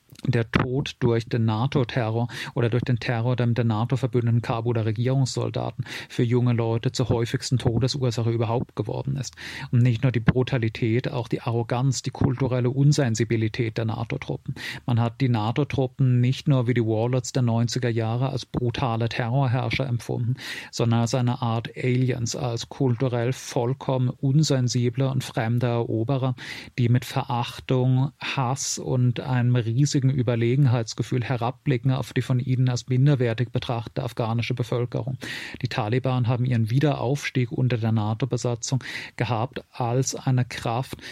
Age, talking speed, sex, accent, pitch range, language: 40-59, 140 wpm, male, German, 120-130 Hz, German